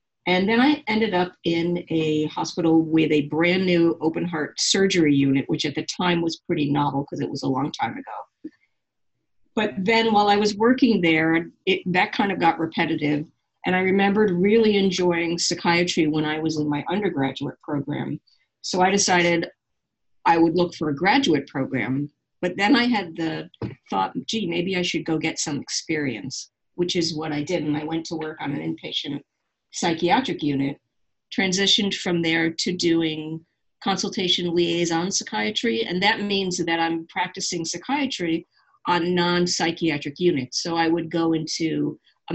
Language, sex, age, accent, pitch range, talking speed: English, female, 50-69, American, 155-190 Hz, 165 wpm